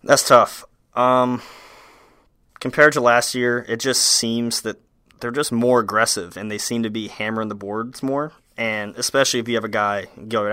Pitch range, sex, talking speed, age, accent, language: 100-120 Hz, male, 180 wpm, 20-39, American, English